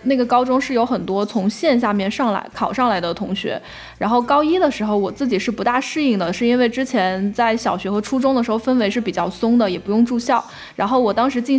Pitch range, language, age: 200-250 Hz, Chinese, 10-29